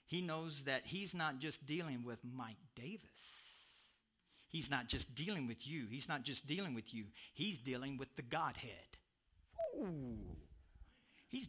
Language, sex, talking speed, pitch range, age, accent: English, male, 145 wpm, 120-170 Hz, 50-69, American